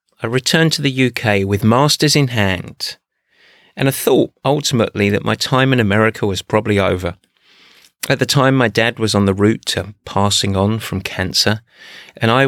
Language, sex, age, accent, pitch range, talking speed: English, male, 30-49, British, 100-130 Hz, 180 wpm